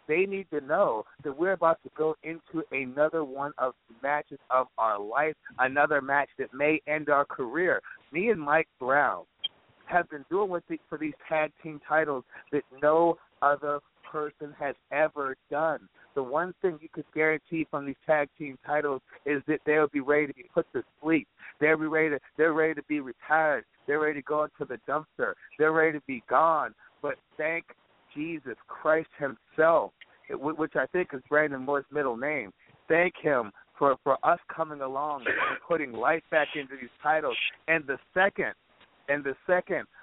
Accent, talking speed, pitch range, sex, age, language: American, 180 wpm, 145-165 Hz, male, 50-69, English